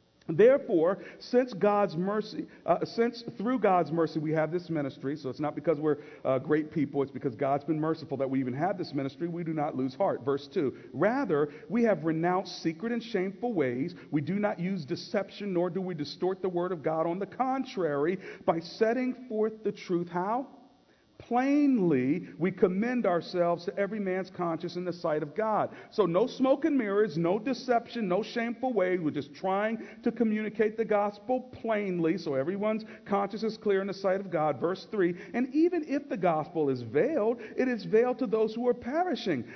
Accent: American